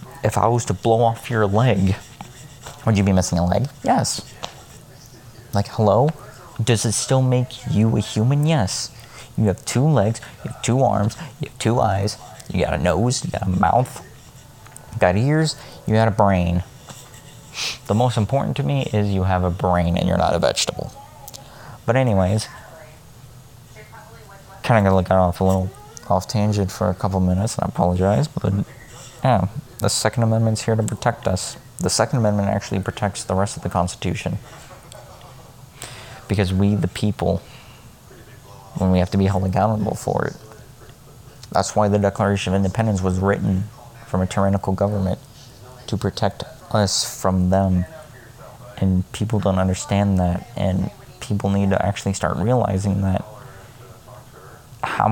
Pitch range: 95-125 Hz